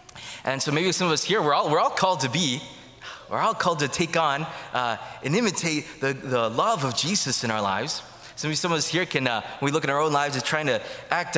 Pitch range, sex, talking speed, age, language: 130-160 Hz, male, 260 wpm, 20-39, English